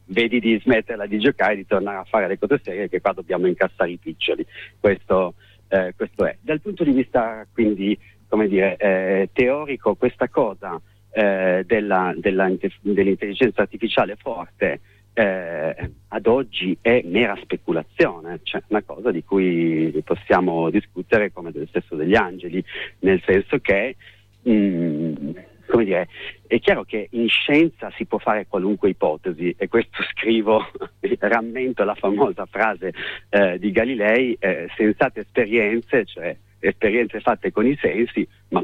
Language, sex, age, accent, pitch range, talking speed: Italian, male, 40-59, native, 95-115 Hz, 145 wpm